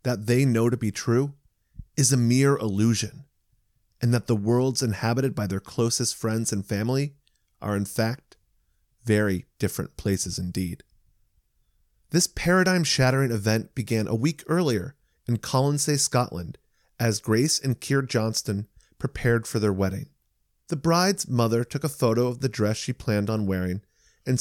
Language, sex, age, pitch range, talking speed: English, male, 30-49, 105-135 Hz, 150 wpm